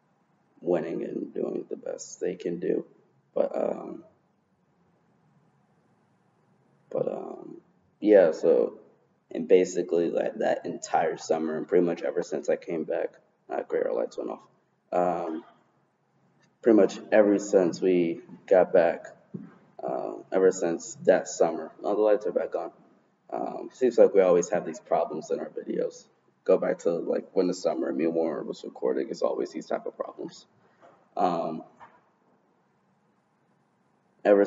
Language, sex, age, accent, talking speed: English, male, 20-39, American, 150 wpm